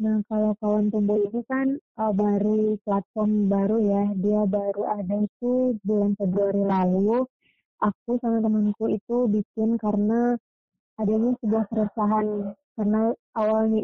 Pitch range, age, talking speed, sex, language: 205-235 Hz, 20-39, 125 wpm, female, Indonesian